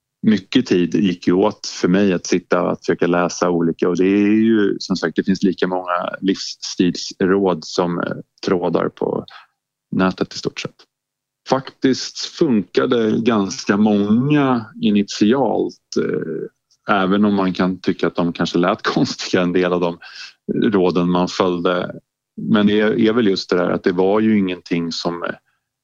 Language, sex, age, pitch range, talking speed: Swedish, male, 30-49, 85-105 Hz, 150 wpm